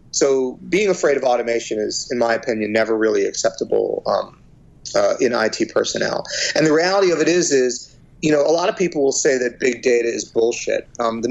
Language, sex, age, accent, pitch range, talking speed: English, male, 30-49, American, 115-180 Hz, 205 wpm